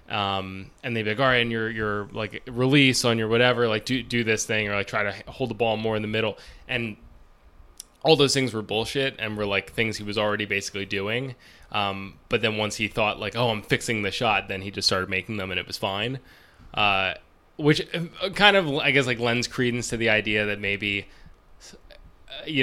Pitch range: 100-115 Hz